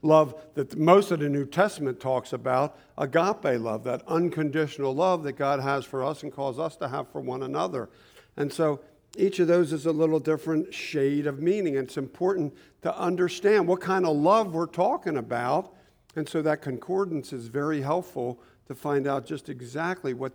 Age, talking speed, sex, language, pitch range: 50-69, 190 wpm, male, English, 135-175 Hz